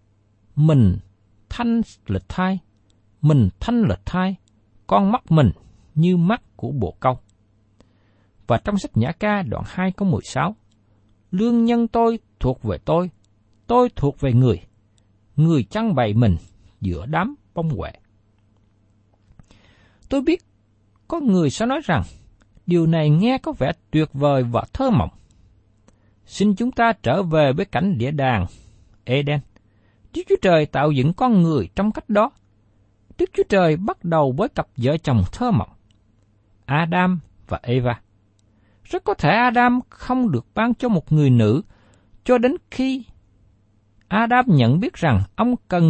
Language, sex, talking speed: Vietnamese, male, 150 wpm